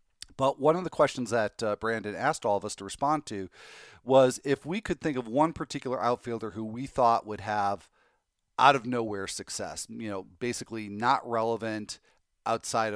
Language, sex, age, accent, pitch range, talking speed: English, male, 40-59, American, 105-130 Hz, 180 wpm